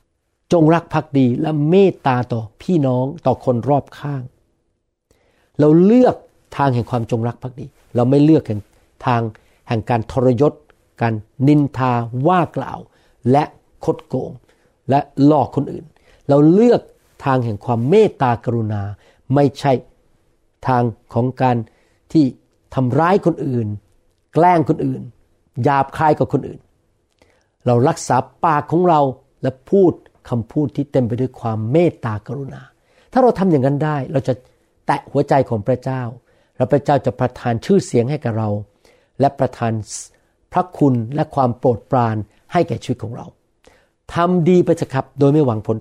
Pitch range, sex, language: 120-155 Hz, male, Thai